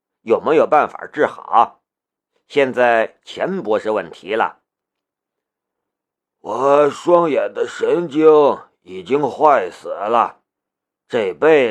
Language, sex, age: Chinese, male, 50-69